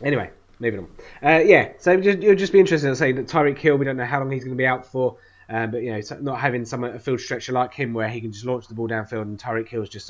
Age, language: 20-39, English